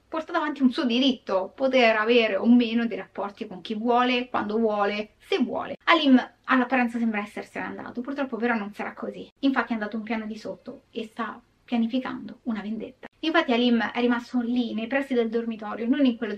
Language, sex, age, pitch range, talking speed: Italian, female, 20-39, 220-265 Hz, 190 wpm